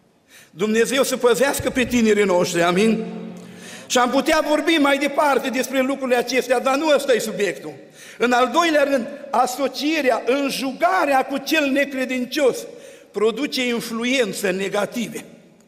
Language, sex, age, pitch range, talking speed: Romanian, male, 50-69, 240-285 Hz, 125 wpm